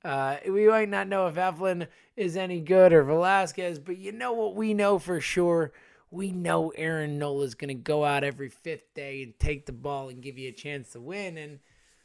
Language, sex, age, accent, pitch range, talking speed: English, male, 20-39, American, 135-180 Hz, 215 wpm